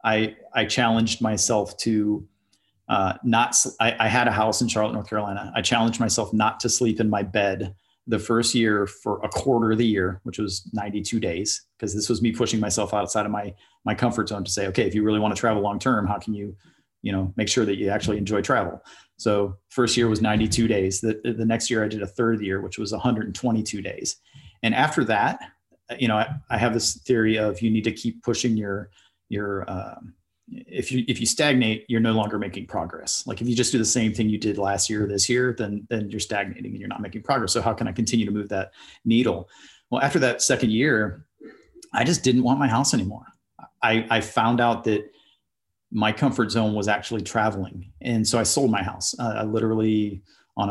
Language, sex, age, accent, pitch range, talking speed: English, male, 40-59, American, 105-115 Hz, 220 wpm